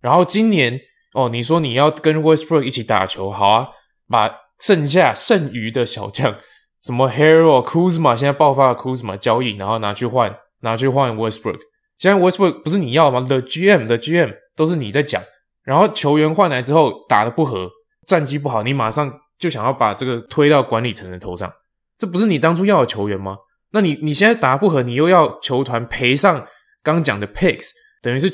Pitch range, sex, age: 120-170 Hz, male, 20-39